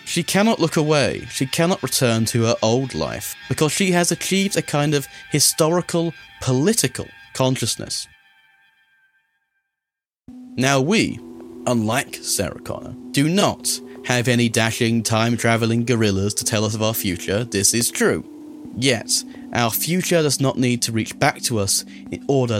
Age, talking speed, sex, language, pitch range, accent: 30-49, 145 wpm, male, English, 115-155 Hz, British